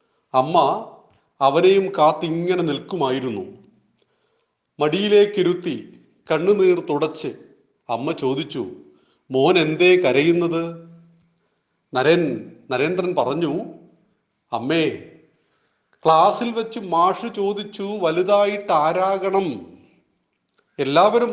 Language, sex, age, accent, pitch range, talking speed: Malayalam, male, 40-59, native, 155-195 Hz, 70 wpm